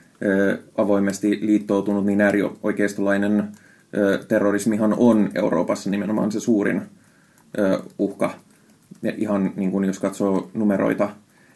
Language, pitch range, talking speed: Finnish, 100-115 Hz, 90 wpm